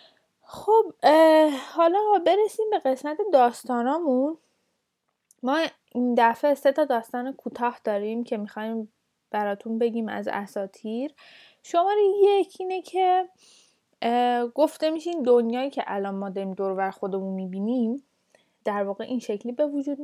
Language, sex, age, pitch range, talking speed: Persian, female, 10-29, 210-275 Hz, 120 wpm